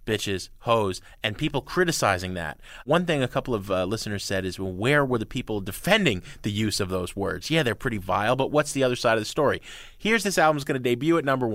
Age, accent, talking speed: 30-49, American, 240 wpm